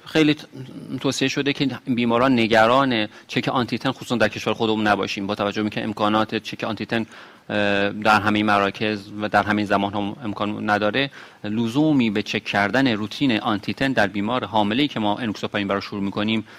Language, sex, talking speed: Persian, male, 160 wpm